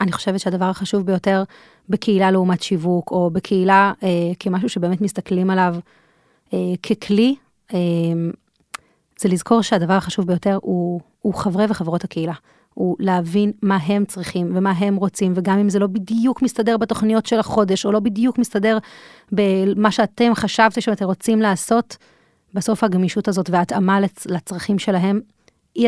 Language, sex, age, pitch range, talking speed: Hebrew, female, 30-49, 180-210 Hz, 145 wpm